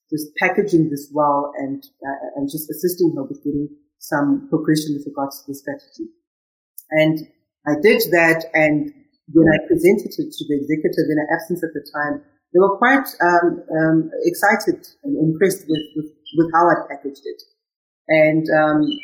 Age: 40-59